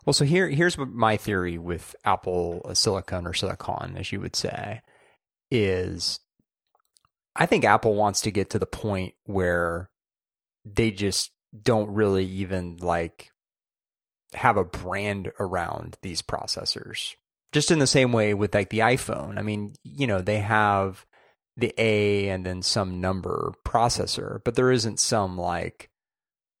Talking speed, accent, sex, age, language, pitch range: 145 wpm, American, male, 30-49, English, 90-110 Hz